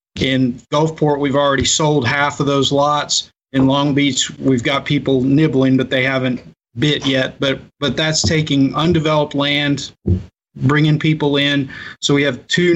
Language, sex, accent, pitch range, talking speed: English, male, American, 130-150 Hz, 160 wpm